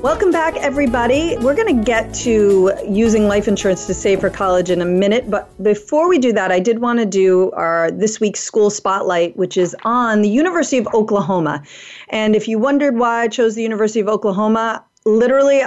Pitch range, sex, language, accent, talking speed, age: 195-270 Hz, female, English, American, 200 wpm, 40-59